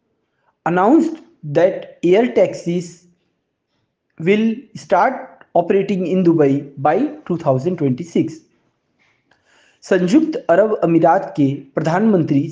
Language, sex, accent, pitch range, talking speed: Hindi, male, native, 155-215 Hz, 80 wpm